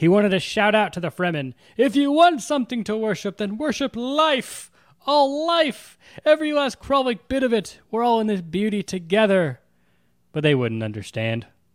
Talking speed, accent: 180 wpm, American